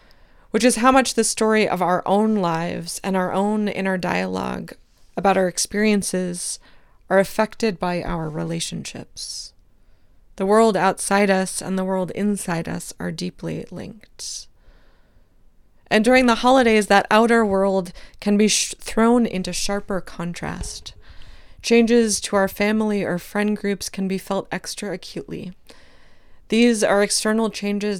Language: English